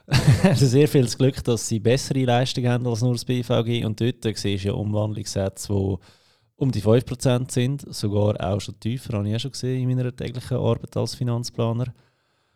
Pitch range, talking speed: 105-125 Hz, 180 wpm